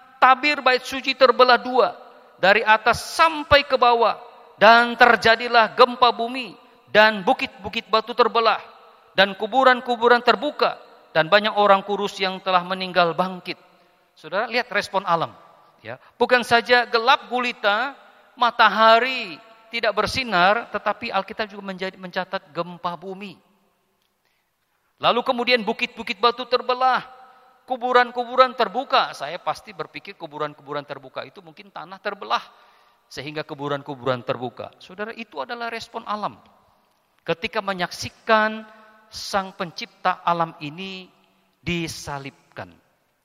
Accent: Indonesian